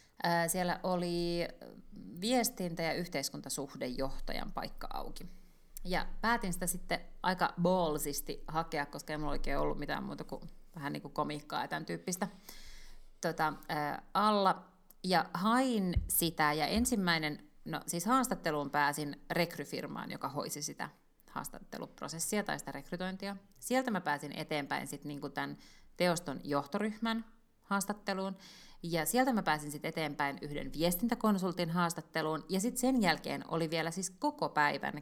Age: 30-49